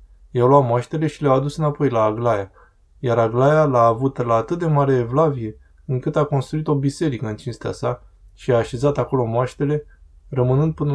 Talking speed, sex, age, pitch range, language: 185 wpm, male, 20-39, 110-140 Hz, Romanian